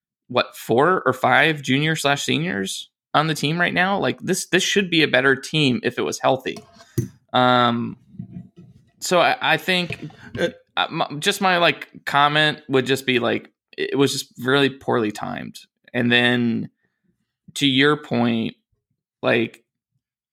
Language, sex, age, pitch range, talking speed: English, male, 20-39, 115-150 Hz, 145 wpm